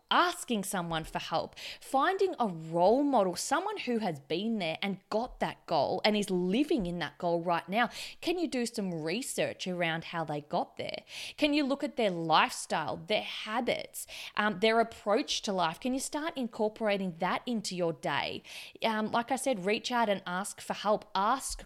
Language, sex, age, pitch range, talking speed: English, female, 20-39, 180-230 Hz, 185 wpm